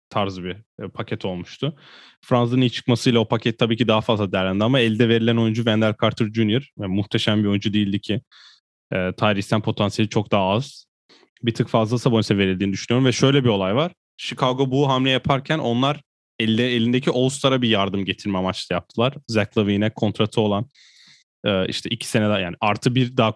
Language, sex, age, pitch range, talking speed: Turkish, male, 10-29, 110-125 Hz, 170 wpm